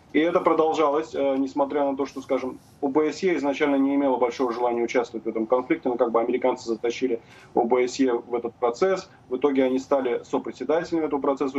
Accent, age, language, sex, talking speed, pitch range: native, 20-39, Russian, male, 175 wpm, 125-150 Hz